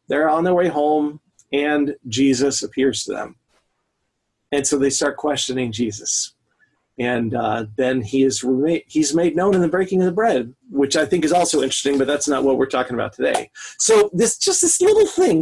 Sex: male